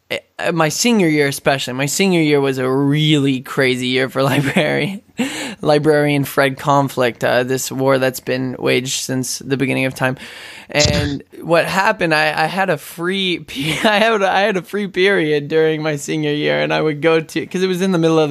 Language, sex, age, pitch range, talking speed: English, male, 10-29, 140-195 Hz, 195 wpm